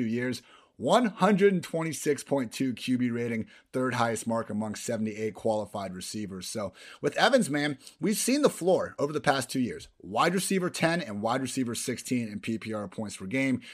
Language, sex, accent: English, male, American